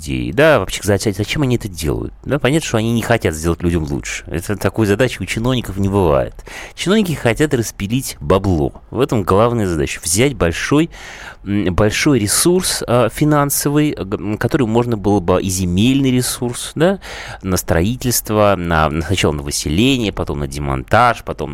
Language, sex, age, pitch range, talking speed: Russian, male, 30-49, 85-135 Hz, 140 wpm